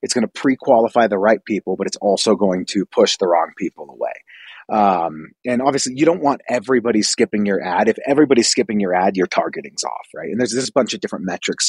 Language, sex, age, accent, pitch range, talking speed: English, male, 30-49, American, 100-130 Hz, 220 wpm